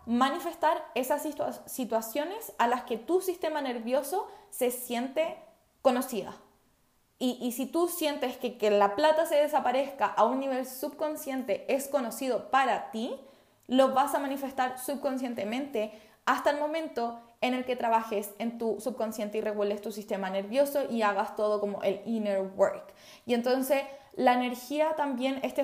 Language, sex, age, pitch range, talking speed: Spanish, female, 20-39, 220-280 Hz, 150 wpm